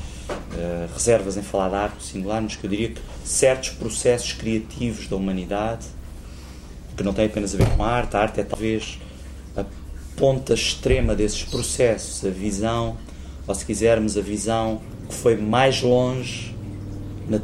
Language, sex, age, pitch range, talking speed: Portuguese, male, 30-49, 90-110 Hz, 160 wpm